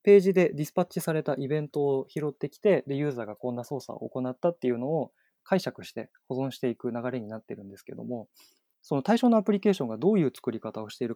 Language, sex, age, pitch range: Japanese, male, 20-39, 120-185 Hz